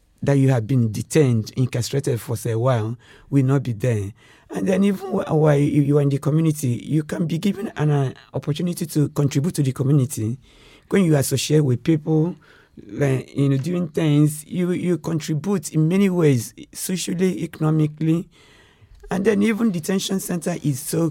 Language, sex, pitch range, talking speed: English, male, 130-165 Hz, 170 wpm